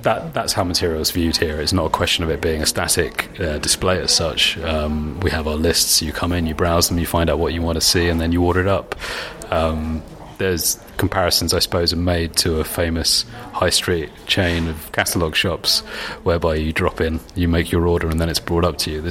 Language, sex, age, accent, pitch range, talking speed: English, male, 30-49, British, 80-95 Hz, 240 wpm